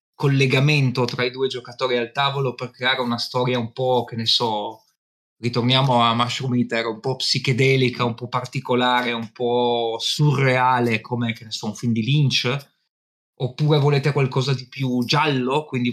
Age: 20-39